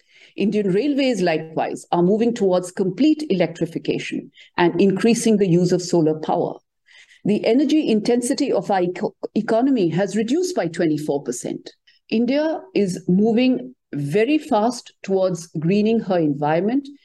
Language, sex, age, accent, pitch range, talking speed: English, female, 50-69, Indian, 190-290 Hz, 120 wpm